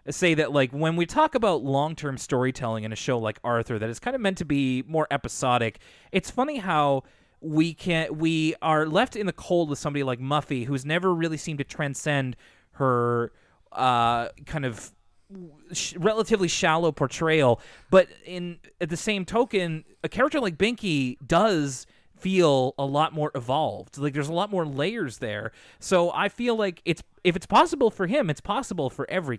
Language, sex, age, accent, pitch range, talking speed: English, male, 30-49, American, 125-165 Hz, 180 wpm